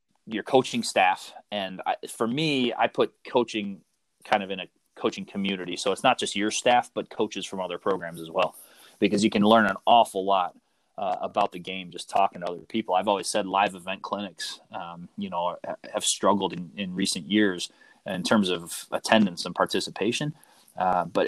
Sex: male